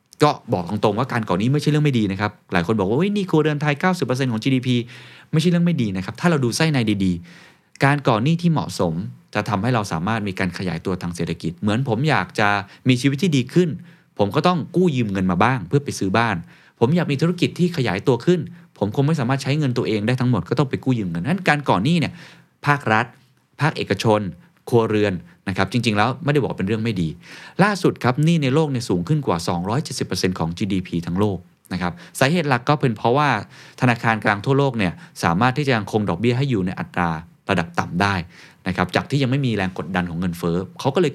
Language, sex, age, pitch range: Thai, male, 20-39, 95-145 Hz